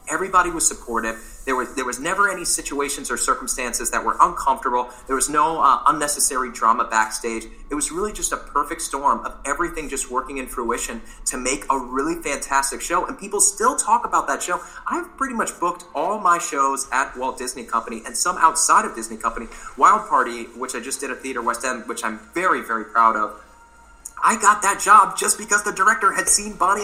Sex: male